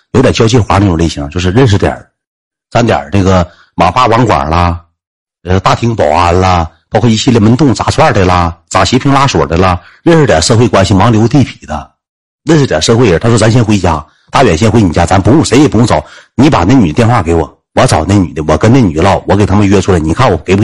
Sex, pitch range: male, 85-110 Hz